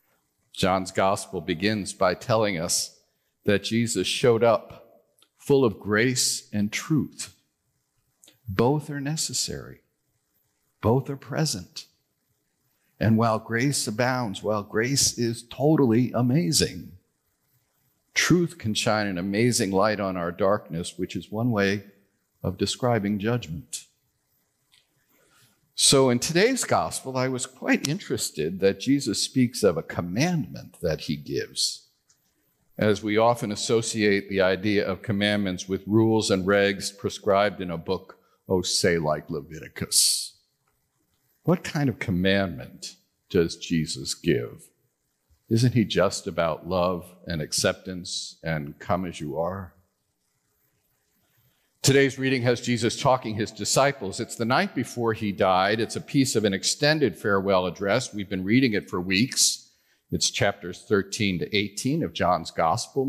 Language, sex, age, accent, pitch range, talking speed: English, male, 50-69, American, 95-125 Hz, 130 wpm